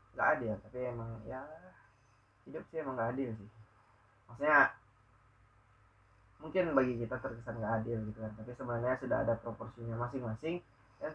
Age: 20-39